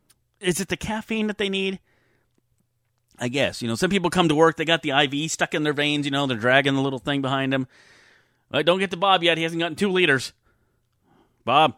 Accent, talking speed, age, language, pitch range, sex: American, 235 wpm, 30-49, English, 115-175 Hz, male